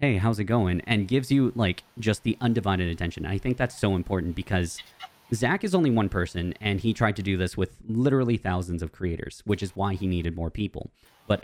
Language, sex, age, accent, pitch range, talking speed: English, male, 20-39, American, 95-120 Hz, 220 wpm